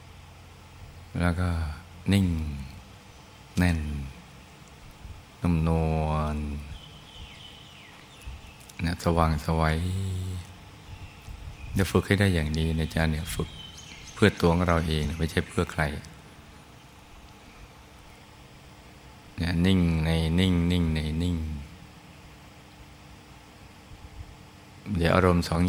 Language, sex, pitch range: Thai, male, 80-95 Hz